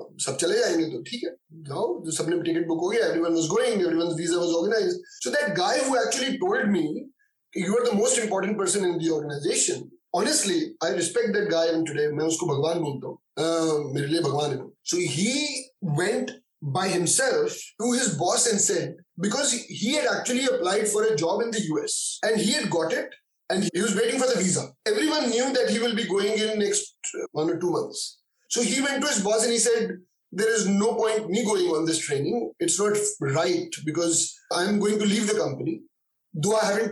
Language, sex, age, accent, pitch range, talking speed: English, male, 30-49, Indian, 170-240 Hz, 195 wpm